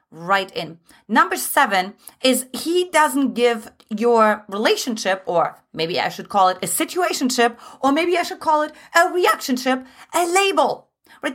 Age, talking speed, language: 30-49, 155 wpm, English